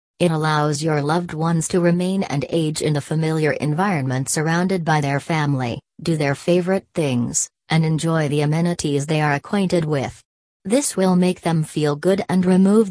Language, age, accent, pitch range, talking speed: English, 40-59, American, 145-175 Hz, 170 wpm